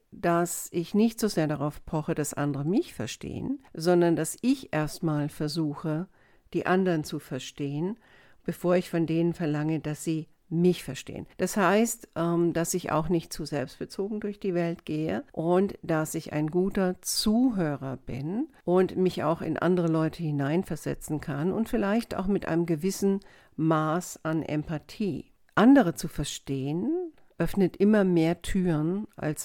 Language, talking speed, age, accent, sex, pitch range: German, 150 wpm, 60-79, German, female, 155-185 Hz